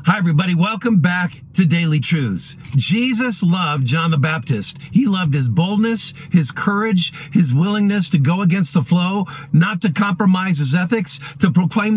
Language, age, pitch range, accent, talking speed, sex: English, 50-69, 160-205 Hz, American, 160 wpm, male